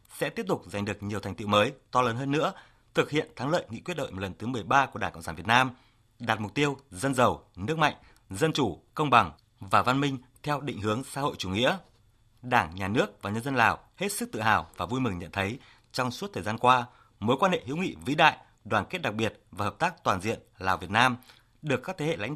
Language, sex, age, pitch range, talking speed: Vietnamese, male, 20-39, 105-135 Hz, 255 wpm